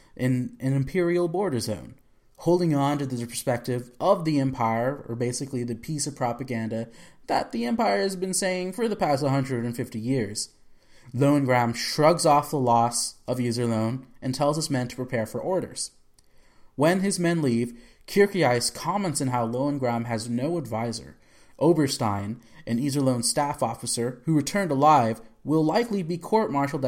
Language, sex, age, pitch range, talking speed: English, male, 30-49, 120-155 Hz, 155 wpm